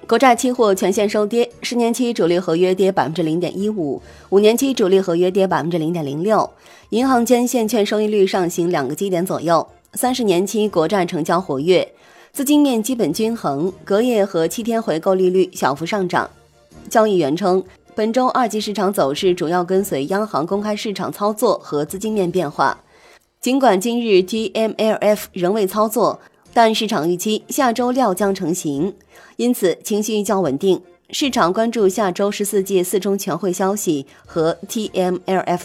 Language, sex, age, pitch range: Chinese, female, 20-39, 180-225 Hz